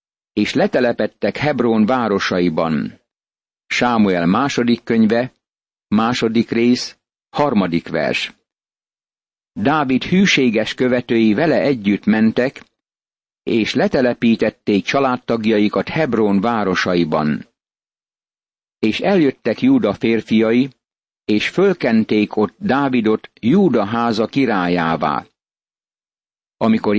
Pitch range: 110-125 Hz